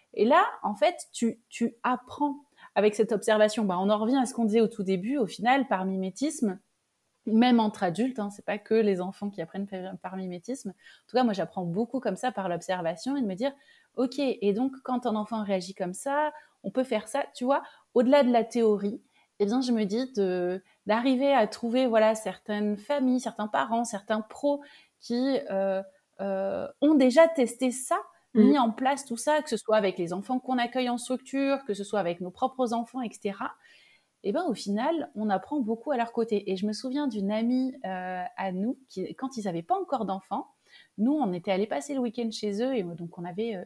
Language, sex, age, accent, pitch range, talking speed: French, female, 30-49, French, 200-260 Hz, 220 wpm